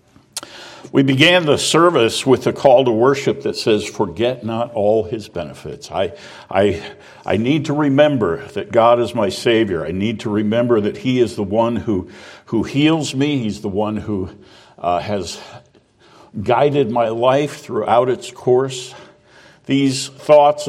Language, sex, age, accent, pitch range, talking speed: English, male, 60-79, American, 105-130 Hz, 155 wpm